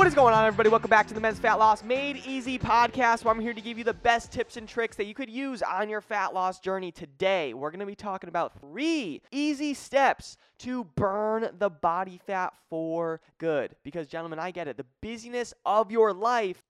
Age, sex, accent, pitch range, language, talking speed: 20-39, male, American, 160-225 Hz, English, 220 wpm